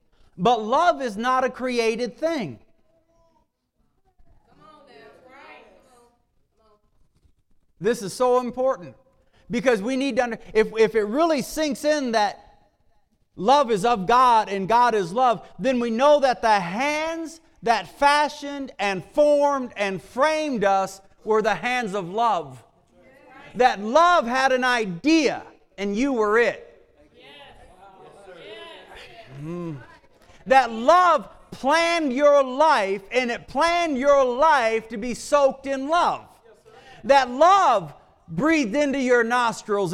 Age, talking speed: 50-69, 120 wpm